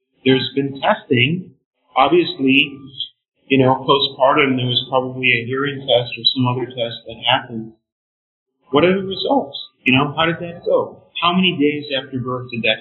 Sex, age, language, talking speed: male, 40-59, English, 170 wpm